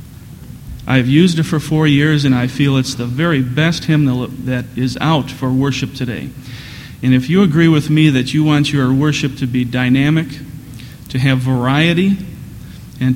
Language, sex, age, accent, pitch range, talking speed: English, male, 40-59, American, 125-150 Hz, 175 wpm